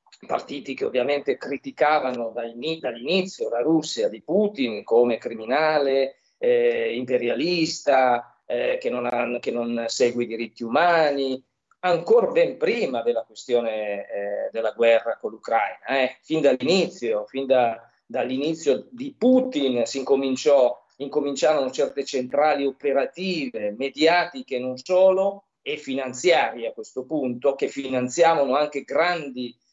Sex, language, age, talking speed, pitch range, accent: male, Italian, 40-59, 115 wpm, 130-205 Hz, native